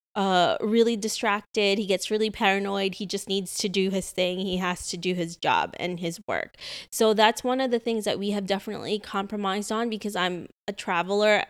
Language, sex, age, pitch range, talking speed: English, female, 20-39, 185-215 Hz, 205 wpm